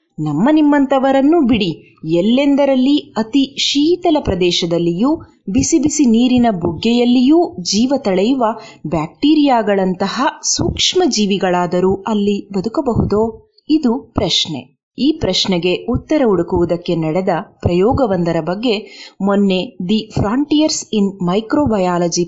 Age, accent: 30-49, native